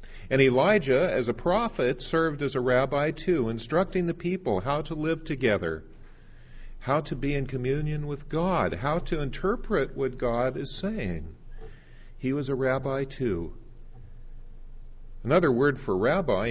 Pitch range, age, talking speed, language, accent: 105-140 Hz, 50-69, 145 wpm, English, American